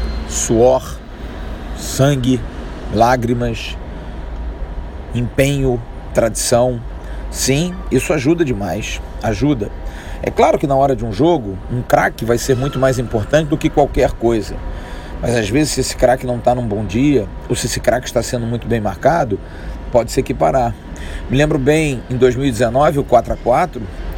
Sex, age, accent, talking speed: male, 40-59, Brazilian, 145 wpm